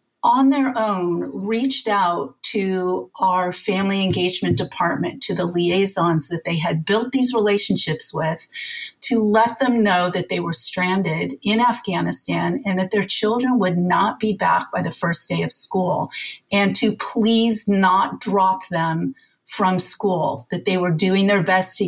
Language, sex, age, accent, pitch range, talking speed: English, female, 40-59, American, 180-215 Hz, 160 wpm